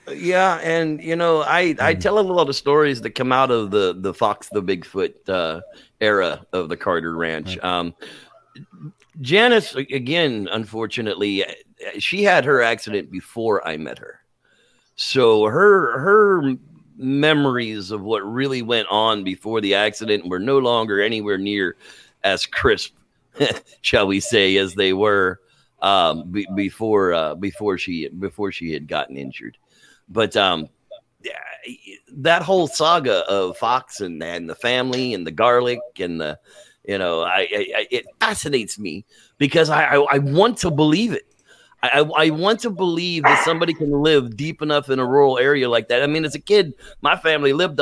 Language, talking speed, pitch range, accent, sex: English, 165 wpm, 105-160 Hz, American, male